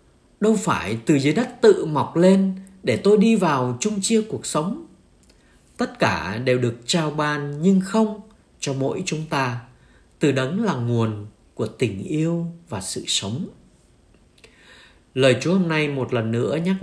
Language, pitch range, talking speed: Vietnamese, 120-195 Hz, 165 wpm